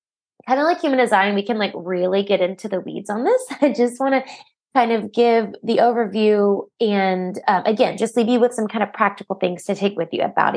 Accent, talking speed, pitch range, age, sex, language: American, 235 wpm, 185-235 Hz, 20-39, female, English